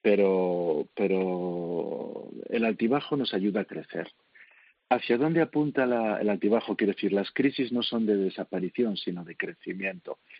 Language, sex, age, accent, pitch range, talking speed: Spanish, male, 50-69, Spanish, 95-125 Hz, 145 wpm